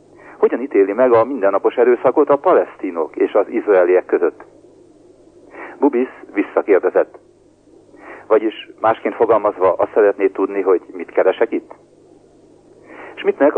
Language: Hungarian